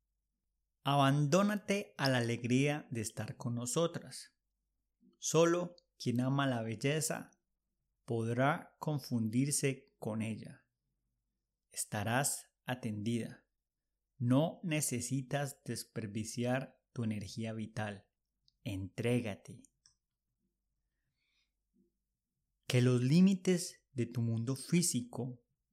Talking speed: 75 wpm